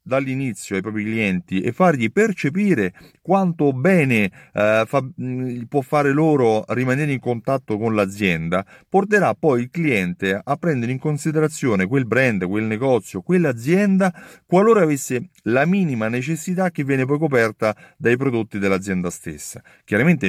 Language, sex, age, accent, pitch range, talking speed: Italian, male, 40-59, native, 110-150 Hz, 140 wpm